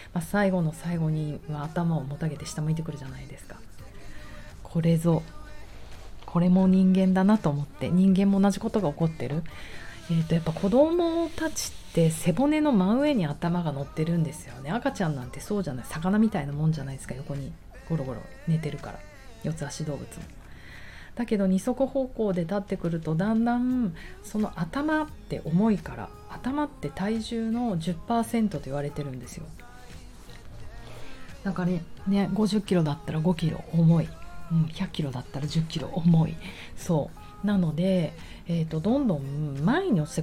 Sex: female